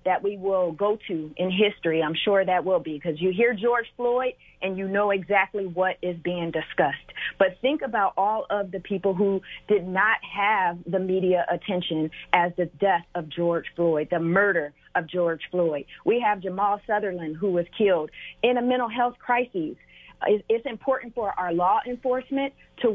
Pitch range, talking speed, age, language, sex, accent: 180-225 Hz, 180 wpm, 40-59, English, female, American